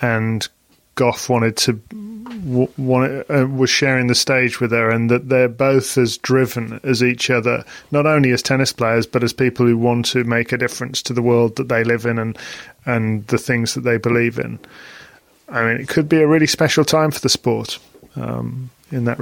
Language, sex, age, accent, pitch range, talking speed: English, male, 20-39, British, 120-135 Hz, 205 wpm